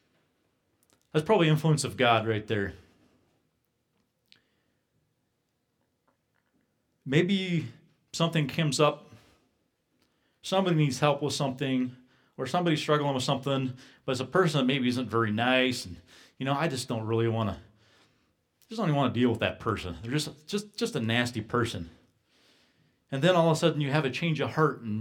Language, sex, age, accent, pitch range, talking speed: English, male, 40-59, American, 110-150 Hz, 160 wpm